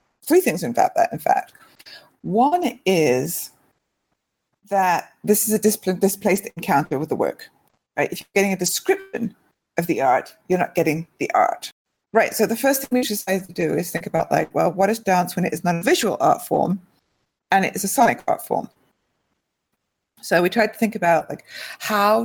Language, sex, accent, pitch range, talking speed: English, female, British, 175-215 Hz, 190 wpm